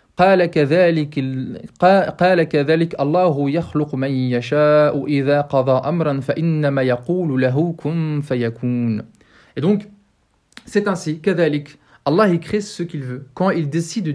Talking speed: 70 wpm